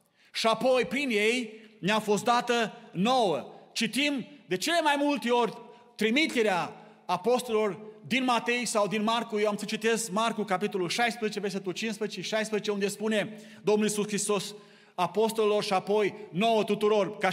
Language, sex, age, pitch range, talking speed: Romanian, male, 30-49, 205-240 Hz, 145 wpm